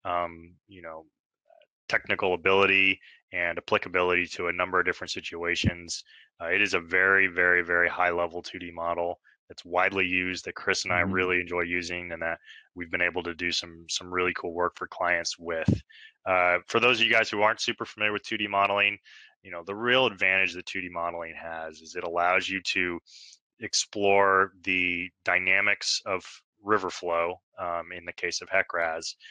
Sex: male